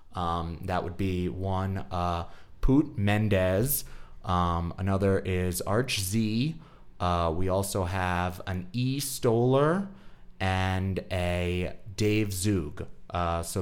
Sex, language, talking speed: male, English, 115 wpm